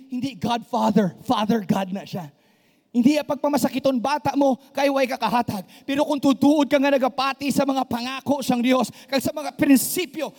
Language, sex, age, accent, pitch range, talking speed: English, male, 30-49, Filipino, 220-285 Hz, 155 wpm